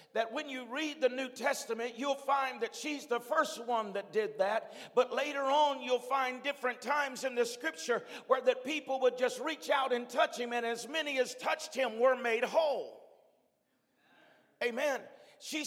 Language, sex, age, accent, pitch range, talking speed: English, male, 50-69, American, 250-285 Hz, 185 wpm